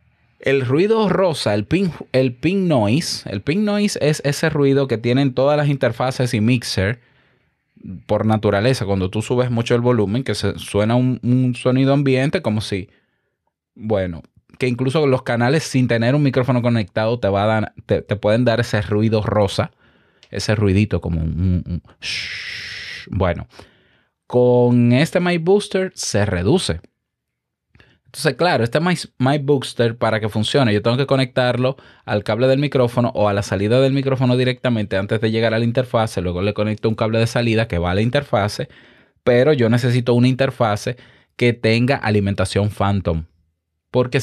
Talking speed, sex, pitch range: 165 wpm, male, 105-135 Hz